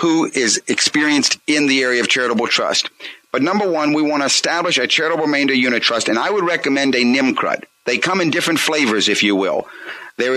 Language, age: English, 50-69